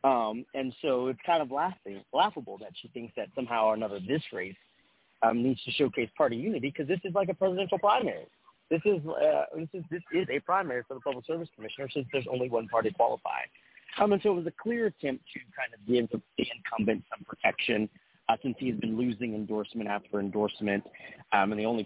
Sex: male